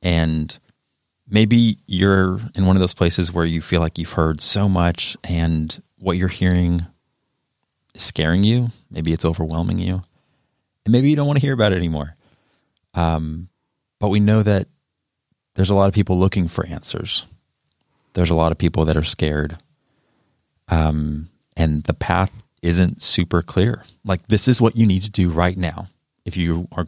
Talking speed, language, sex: 175 wpm, English, male